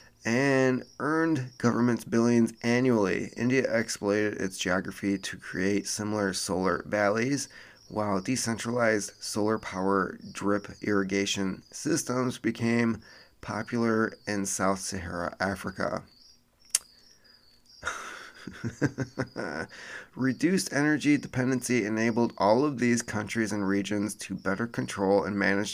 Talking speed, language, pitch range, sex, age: 100 wpm, English, 100-125 Hz, male, 30-49